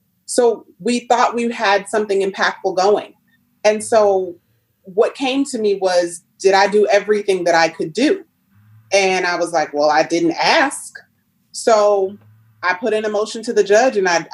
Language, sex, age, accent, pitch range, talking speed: English, female, 30-49, American, 170-220 Hz, 175 wpm